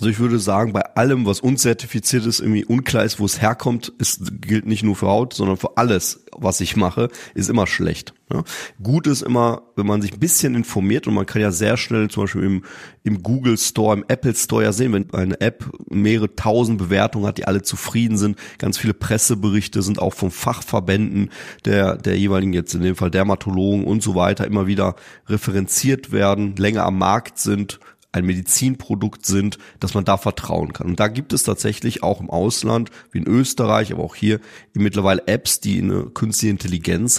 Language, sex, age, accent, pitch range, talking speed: German, male, 30-49, German, 100-115 Hz, 190 wpm